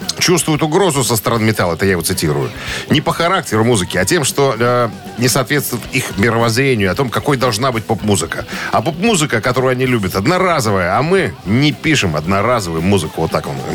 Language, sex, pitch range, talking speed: Russian, male, 100-135 Hz, 185 wpm